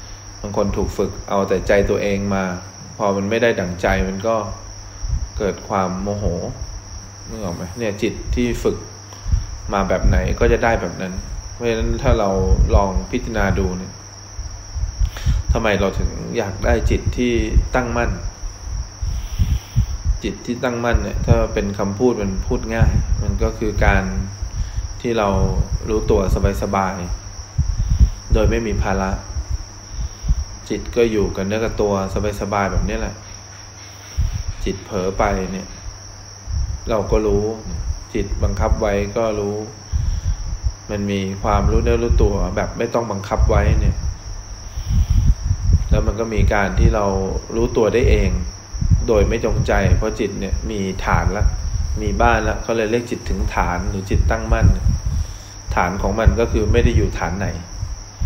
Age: 20-39